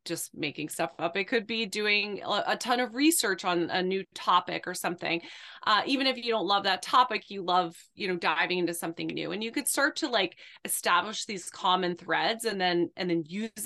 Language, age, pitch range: English, 20-39, 170-210 Hz